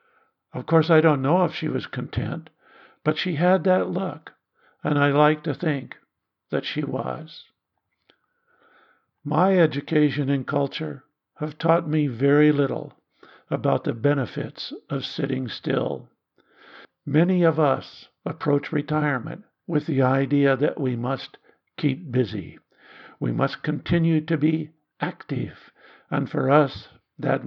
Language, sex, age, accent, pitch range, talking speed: English, male, 60-79, American, 135-155 Hz, 130 wpm